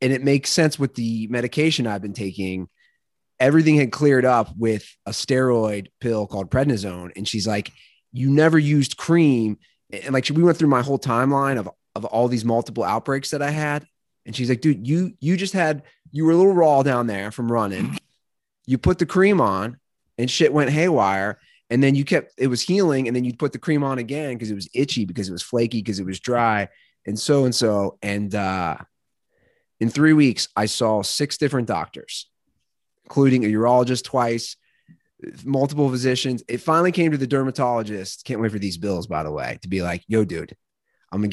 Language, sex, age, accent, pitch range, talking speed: English, male, 30-49, American, 105-145 Hz, 200 wpm